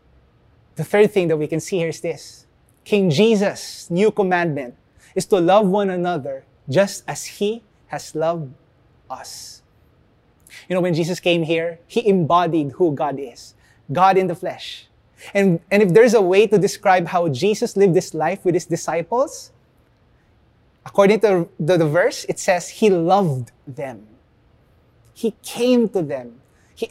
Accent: Filipino